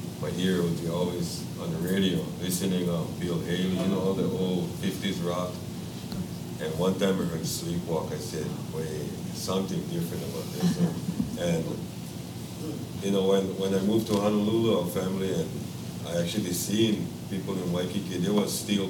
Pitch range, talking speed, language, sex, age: 90-105 Hz, 170 wpm, English, male, 50-69